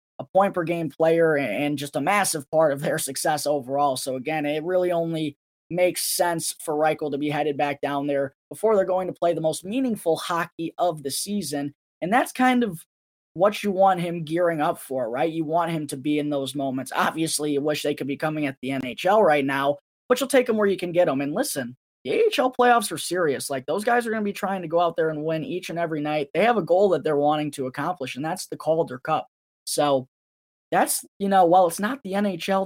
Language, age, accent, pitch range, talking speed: English, 20-39, American, 145-185 Hz, 235 wpm